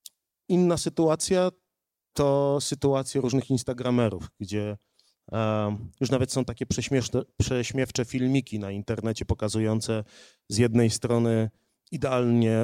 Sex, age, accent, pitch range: male, 30-49, native, 110-135 Hz